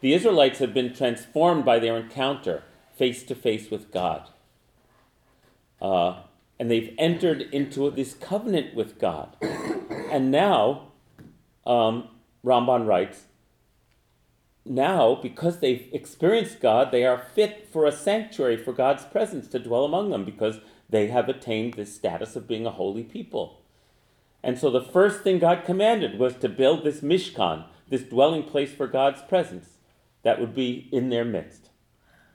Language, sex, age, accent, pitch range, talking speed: English, male, 40-59, American, 110-150 Hz, 145 wpm